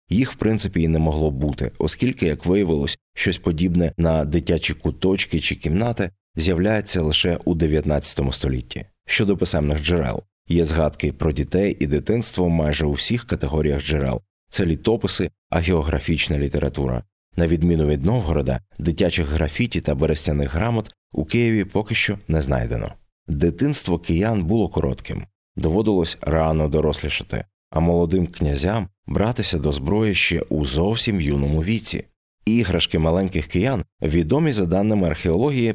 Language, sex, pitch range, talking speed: Ukrainian, male, 75-100 Hz, 135 wpm